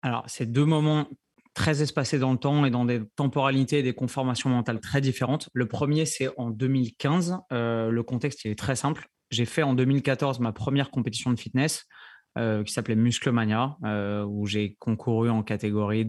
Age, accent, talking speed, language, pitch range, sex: 20-39, French, 190 wpm, French, 110-125 Hz, male